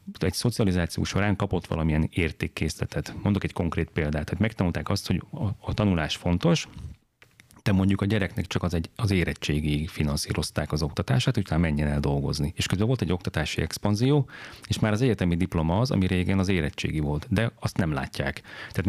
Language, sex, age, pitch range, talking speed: Hungarian, male, 30-49, 80-105 Hz, 180 wpm